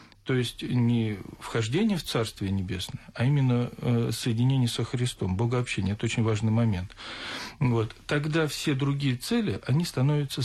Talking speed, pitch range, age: 140 wpm, 110-150 Hz, 40-59